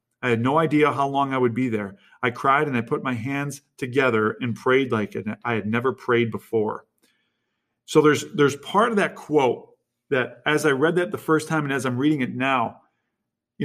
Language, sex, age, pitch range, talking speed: English, male, 40-59, 120-155 Hz, 210 wpm